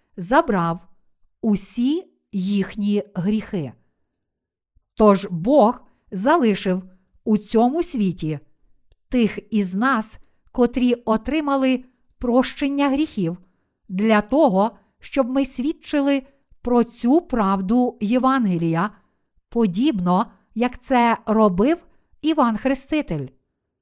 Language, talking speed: Ukrainian, 80 wpm